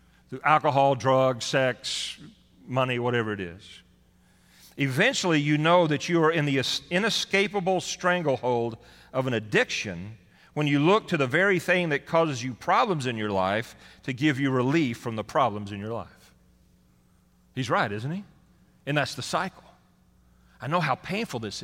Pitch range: 110-175 Hz